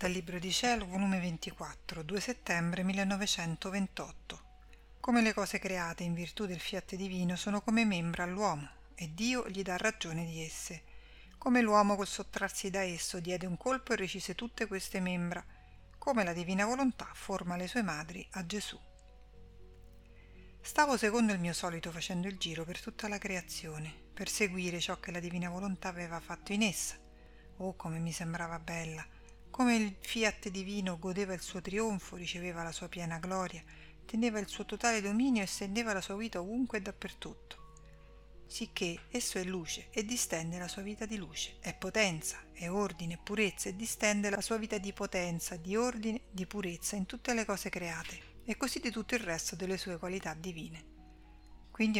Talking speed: 175 wpm